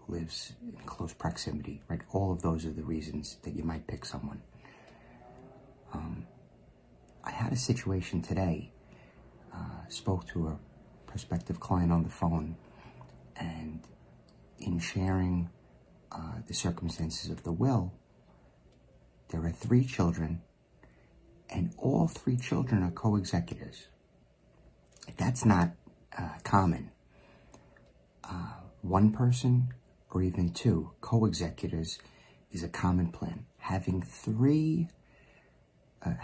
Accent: American